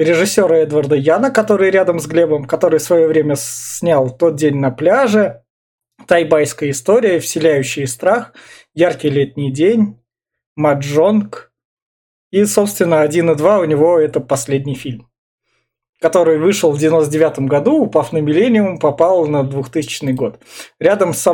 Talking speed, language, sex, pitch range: 140 wpm, Russian, male, 145-185 Hz